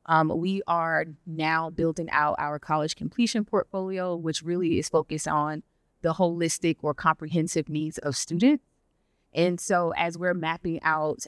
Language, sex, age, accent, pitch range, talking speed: English, female, 30-49, American, 150-175 Hz, 150 wpm